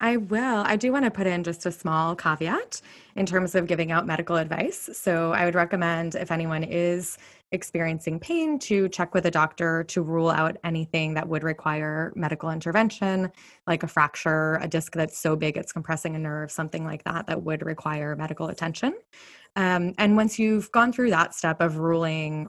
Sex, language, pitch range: female, English, 160-185 Hz